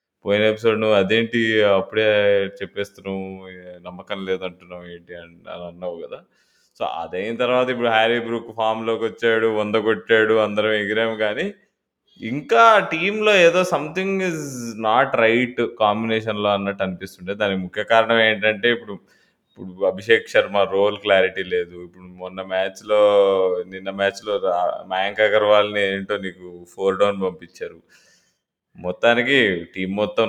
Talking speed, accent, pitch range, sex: 125 wpm, native, 95-125 Hz, male